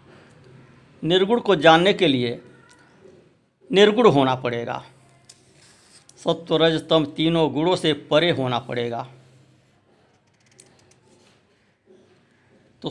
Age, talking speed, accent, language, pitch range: 60-79, 75 wpm, native, Hindi, 125-160 Hz